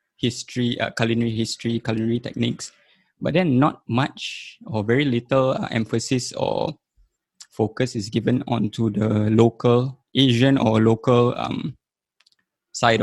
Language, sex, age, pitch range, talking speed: English, male, 20-39, 115-130 Hz, 125 wpm